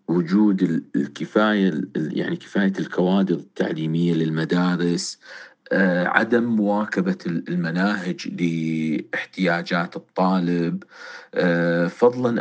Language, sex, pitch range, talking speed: Arabic, male, 85-100 Hz, 65 wpm